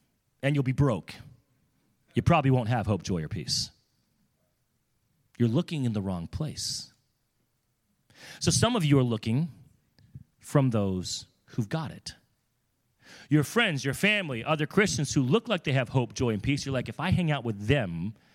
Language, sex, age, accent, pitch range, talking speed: English, male, 30-49, American, 115-155 Hz, 170 wpm